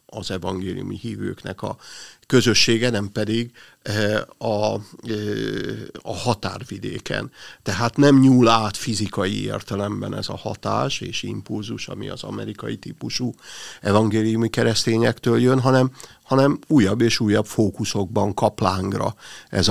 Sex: male